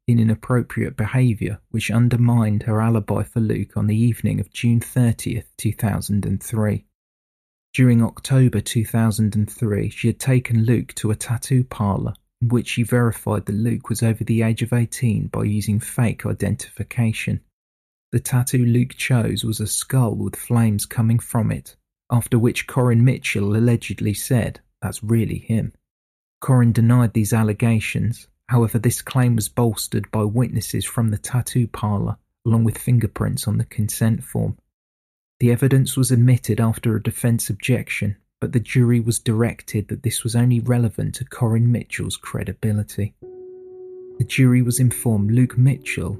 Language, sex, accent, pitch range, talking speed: English, male, British, 105-120 Hz, 145 wpm